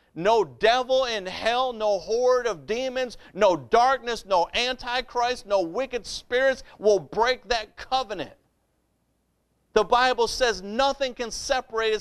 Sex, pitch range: male, 185-245 Hz